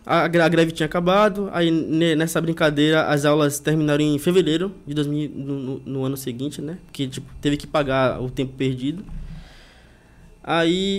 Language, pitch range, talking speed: Portuguese, 135-175 Hz, 155 wpm